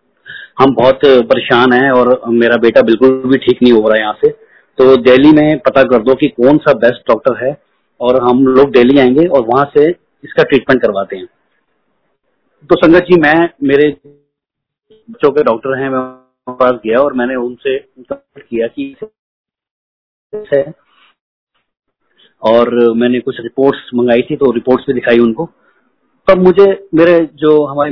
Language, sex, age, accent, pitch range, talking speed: Hindi, male, 30-49, native, 125-160 Hz, 160 wpm